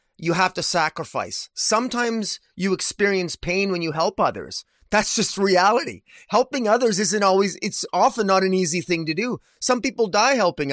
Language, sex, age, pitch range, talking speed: English, male, 30-49, 155-195 Hz, 175 wpm